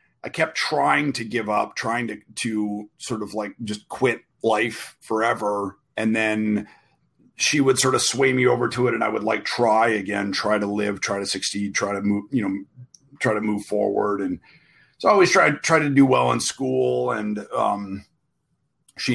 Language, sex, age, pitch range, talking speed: English, male, 40-59, 105-130 Hz, 195 wpm